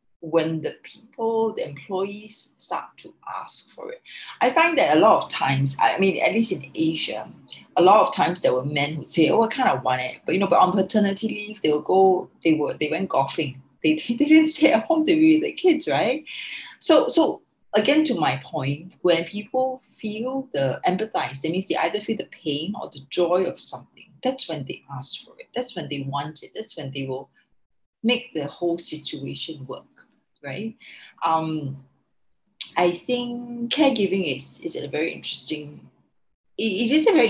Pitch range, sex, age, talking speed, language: 155-245 Hz, female, 30-49, 195 wpm, English